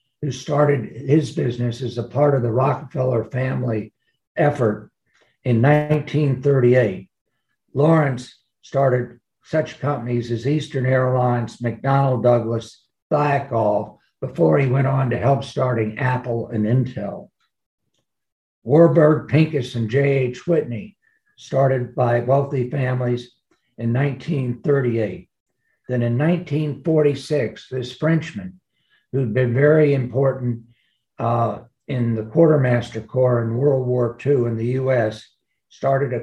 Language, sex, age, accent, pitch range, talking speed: English, male, 60-79, American, 120-140 Hz, 115 wpm